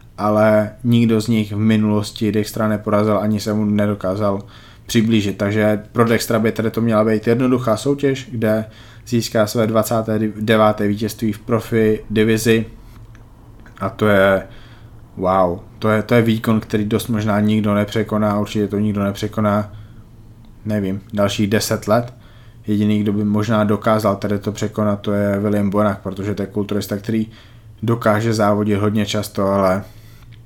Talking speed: 150 wpm